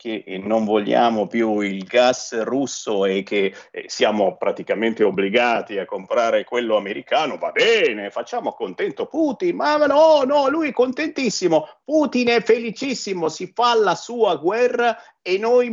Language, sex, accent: Italian, male, native